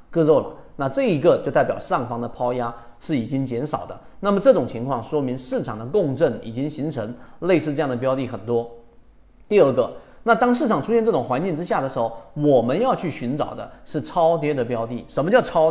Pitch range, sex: 130-190 Hz, male